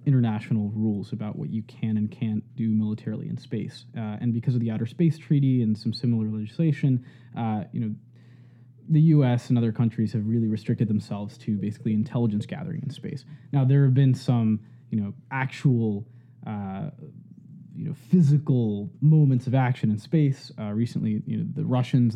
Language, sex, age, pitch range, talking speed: English, male, 20-39, 110-135 Hz, 175 wpm